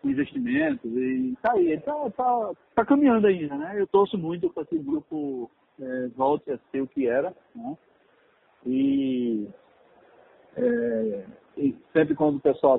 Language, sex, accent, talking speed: Portuguese, male, Brazilian, 150 wpm